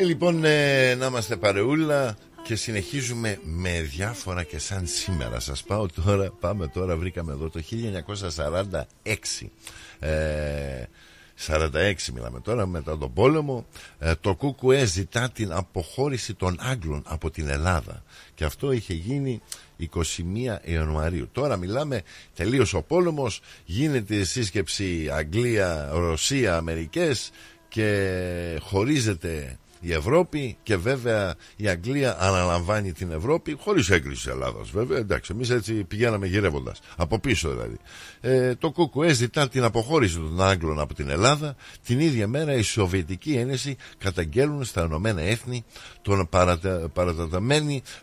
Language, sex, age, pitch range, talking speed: Greek, male, 50-69, 85-125 Hz, 125 wpm